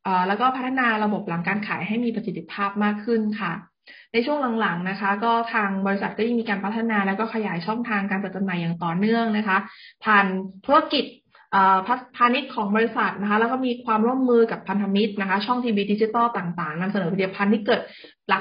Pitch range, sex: 195-235 Hz, female